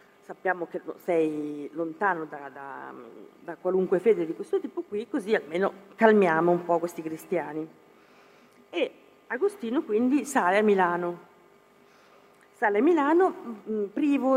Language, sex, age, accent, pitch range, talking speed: Italian, female, 40-59, native, 175-235 Hz, 120 wpm